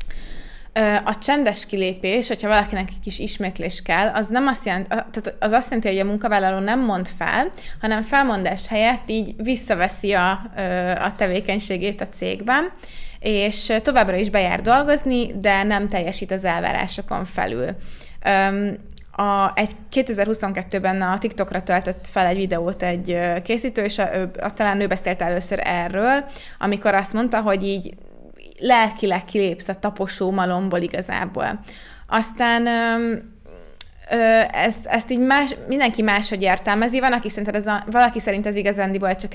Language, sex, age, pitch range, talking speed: Hungarian, female, 20-39, 190-220 Hz, 140 wpm